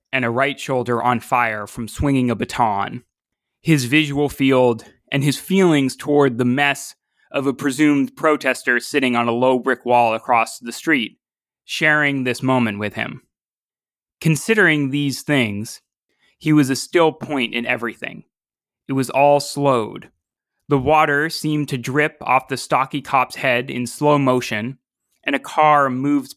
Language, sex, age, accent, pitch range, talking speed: English, male, 20-39, American, 125-150 Hz, 155 wpm